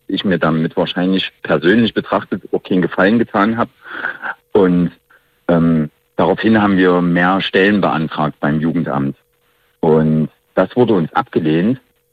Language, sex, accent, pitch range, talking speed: German, male, German, 80-95 Hz, 130 wpm